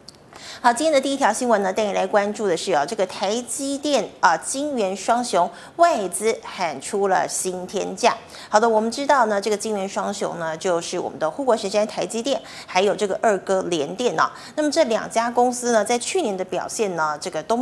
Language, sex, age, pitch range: Chinese, female, 30-49, 185-235 Hz